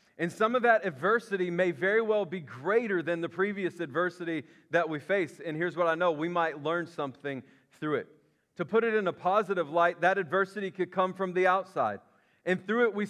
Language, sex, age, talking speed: English, male, 40-59, 210 wpm